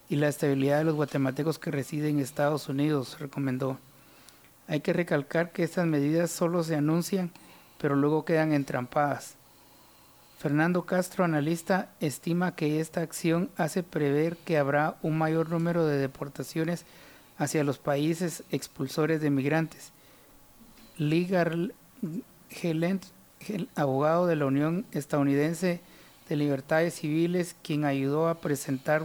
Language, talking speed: Spanish, 125 wpm